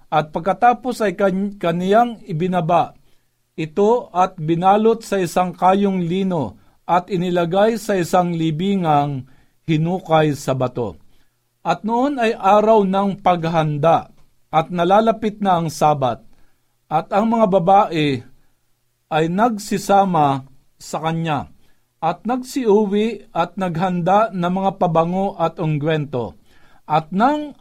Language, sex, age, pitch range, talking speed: Filipino, male, 50-69, 155-200 Hz, 110 wpm